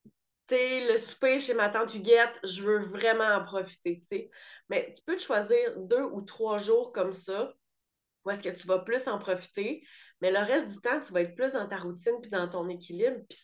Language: French